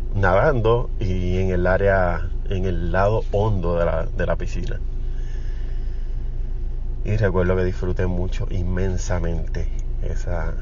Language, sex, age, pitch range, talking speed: Spanish, male, 30-49, 90-105 Hz, 120 wpm